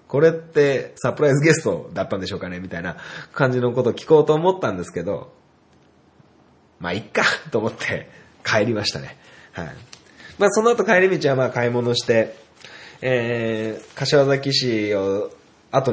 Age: 20-39